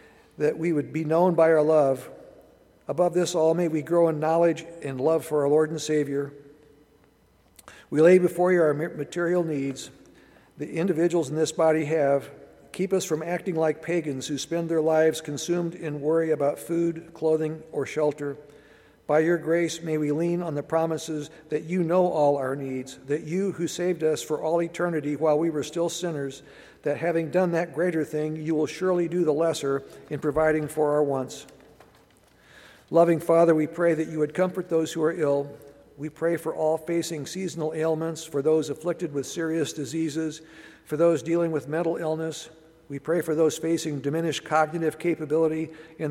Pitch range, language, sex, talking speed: 150-165 Hz, English, male, 180 wpm